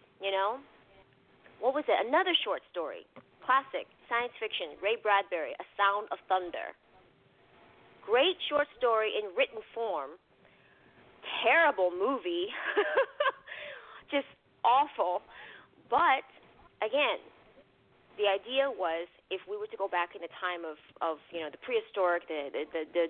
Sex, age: female, 30-49